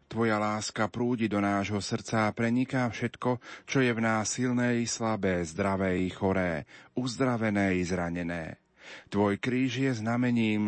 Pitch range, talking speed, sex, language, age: 95-115 Hz, 145 wpm, male, Slovak, 40-59